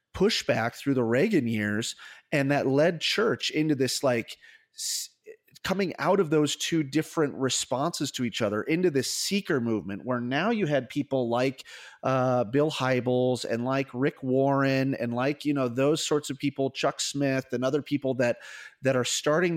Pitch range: 120-150 Hz